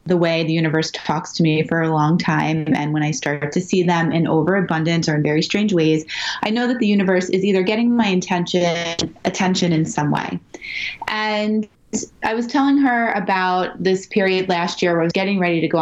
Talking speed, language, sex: 215 wpm, English, female